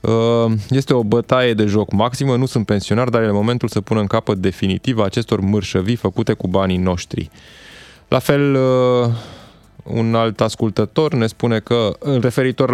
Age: 20-39